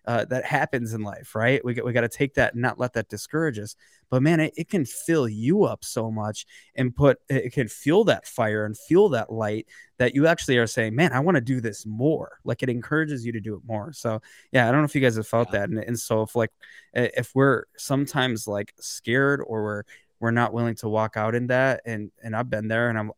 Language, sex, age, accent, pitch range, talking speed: English, male, 20-39, American, 110-130 Hz, 255 wpm